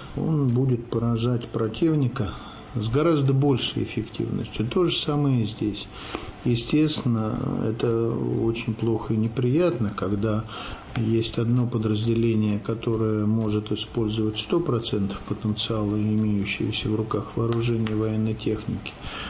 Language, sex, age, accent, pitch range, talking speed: Russian, male, 50-69, native, 110-135 Hz, 110 wpm